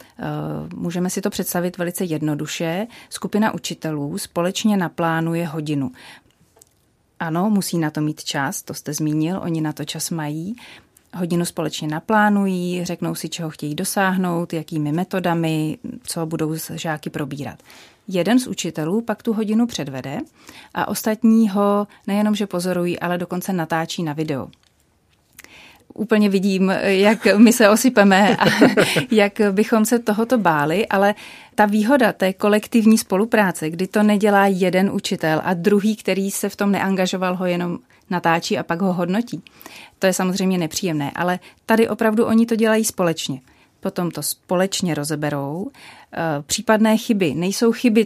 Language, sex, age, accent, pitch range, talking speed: Czech, female, 30-49, native, 165-210 Hz, 140 wpm